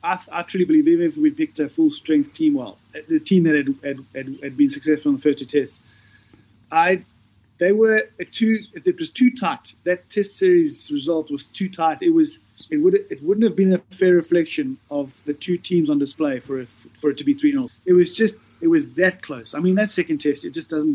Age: 30-49